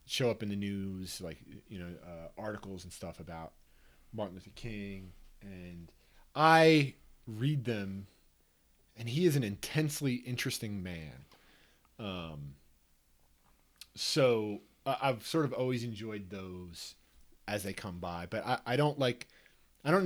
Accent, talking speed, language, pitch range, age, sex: American, 140 wpm, English, 80-120 Hz, 30-49, male